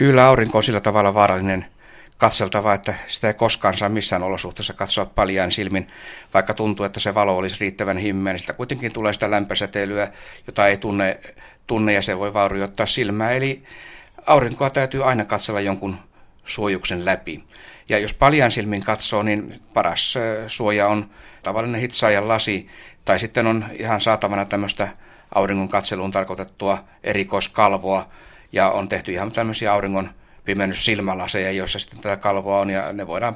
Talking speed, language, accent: 150 wpm, Finnish, native